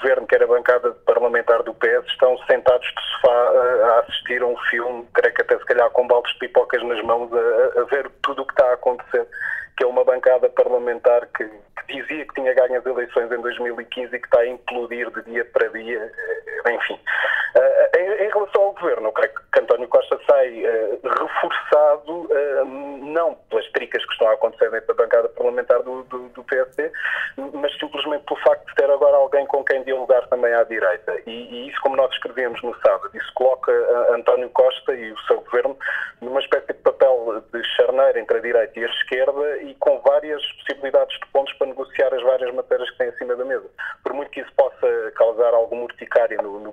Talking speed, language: 195 wpm, Portuguese